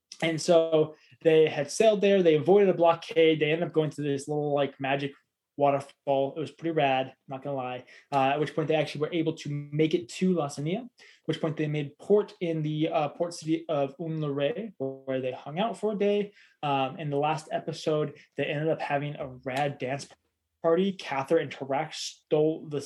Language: English